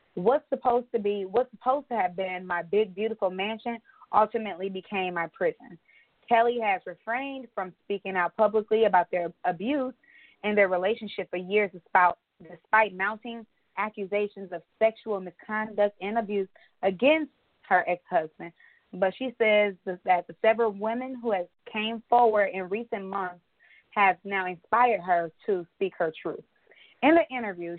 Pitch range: 180-225 Hz